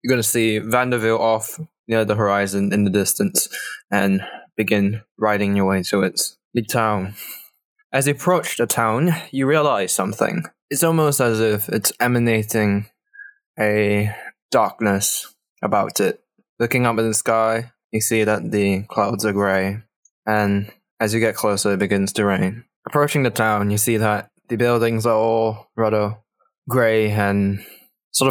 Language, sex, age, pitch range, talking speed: English, male, 10-29, 105-120 Hz, 155 wpm